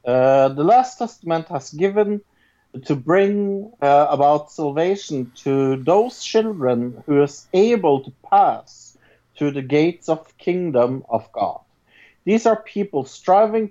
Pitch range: 130-185 Hz